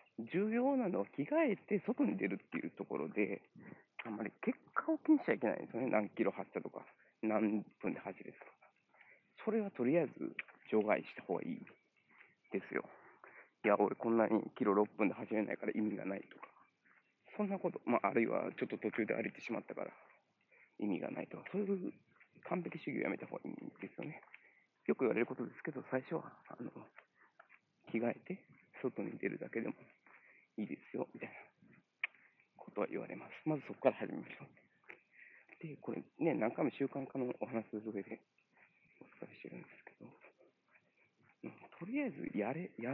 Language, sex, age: Japanese, male, 40-59